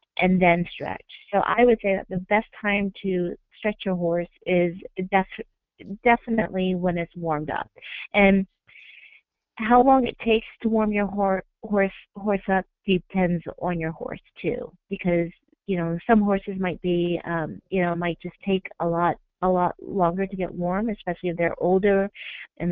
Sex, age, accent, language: female, 30-49, American, English